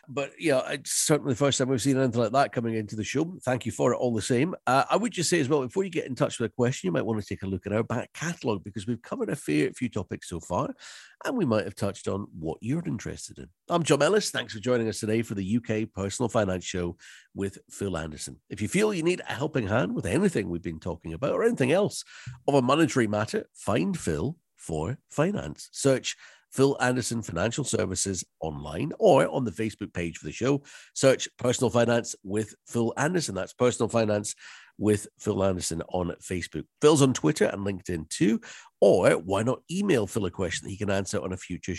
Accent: British